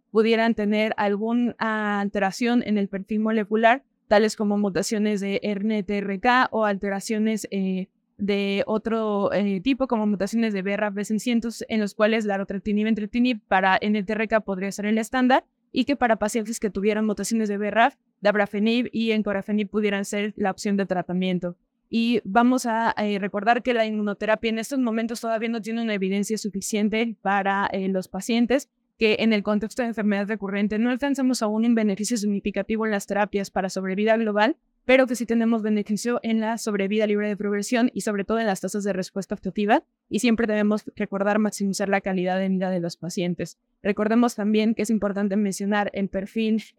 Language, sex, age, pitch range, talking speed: Spanish, female, 20-39, 200-230 Hz, 170 wpm